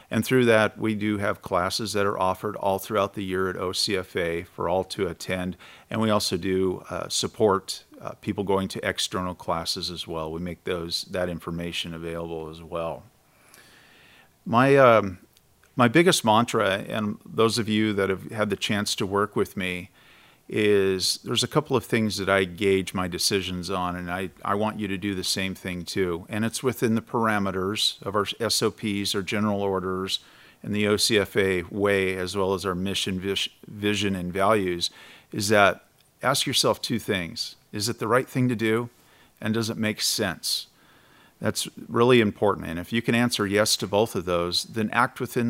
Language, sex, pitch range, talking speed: English, male, 95-110 Hz, 185 wpm